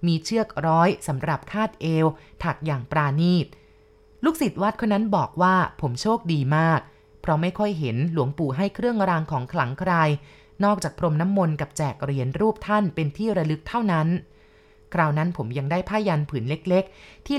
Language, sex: Thai, female